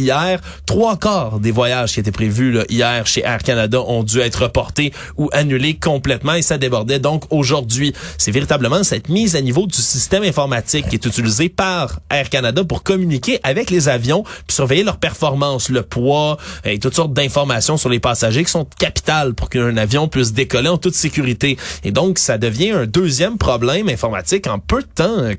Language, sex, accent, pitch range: French, male, Canadian, 125-165 Hz